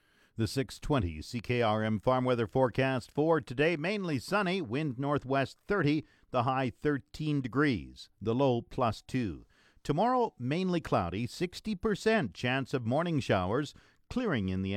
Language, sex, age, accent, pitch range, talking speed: English, male, 50-69, American, 115-155 Hz, 130 wpm